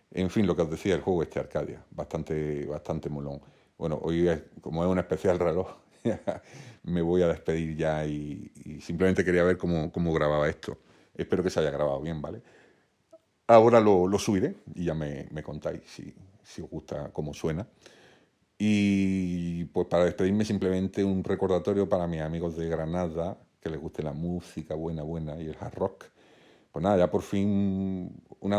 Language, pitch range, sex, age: Spanish, 80-95 Hz, male, 40-59